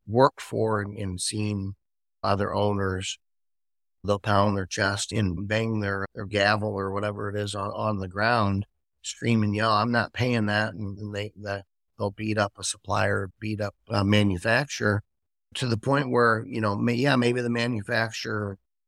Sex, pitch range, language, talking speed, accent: male, 95-115 Hz, English, 170 wpm, American